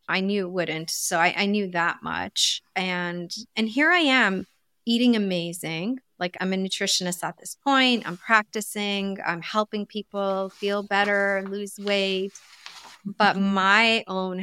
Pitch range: 180-225 Hz